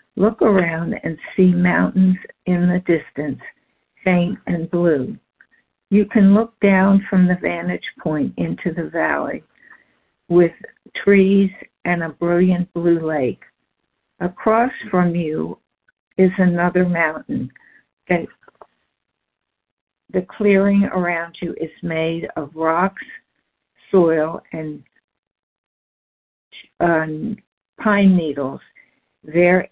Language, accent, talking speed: English, American, 100 wpm